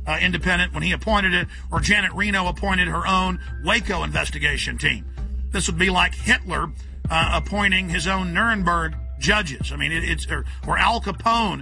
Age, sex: 50-69, male